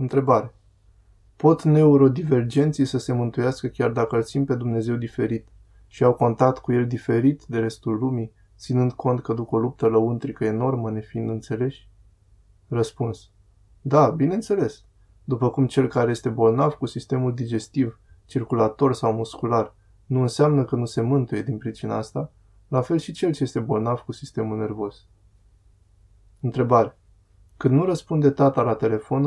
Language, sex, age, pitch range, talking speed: Romanian, male, 20-39, 105-135 Hz, 150 wpm